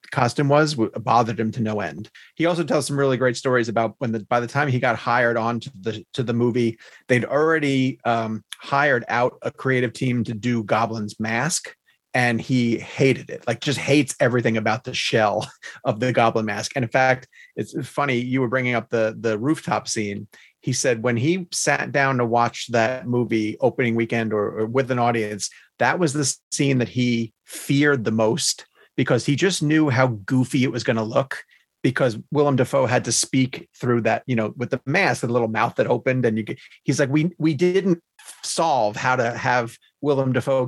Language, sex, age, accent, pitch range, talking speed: English, male, 40-59, American, 115-140 Hz, 205 wpm